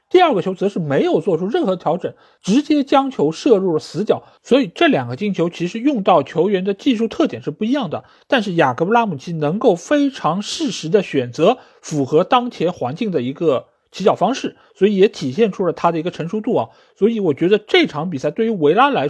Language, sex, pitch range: Chinese, male, 160-245 Hz